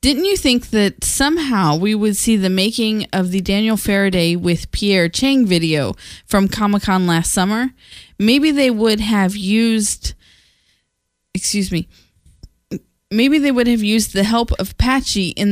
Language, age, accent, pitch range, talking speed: English, 20-39, American, 180-230 Hz, 150 wpm